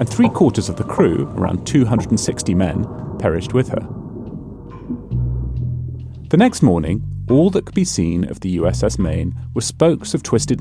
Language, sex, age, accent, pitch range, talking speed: English, male, 30-49, British, 90-125 Hz, 155 wpm